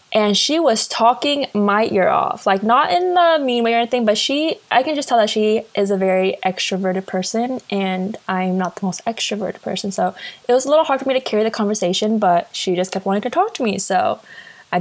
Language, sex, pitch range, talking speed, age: English, female, 190-235 Hz, 235 wpm, 20-39